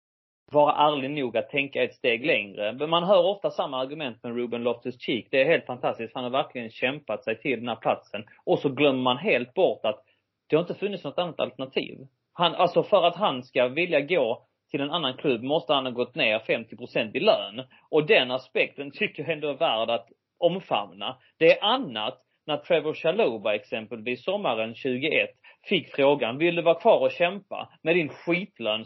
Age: 30-49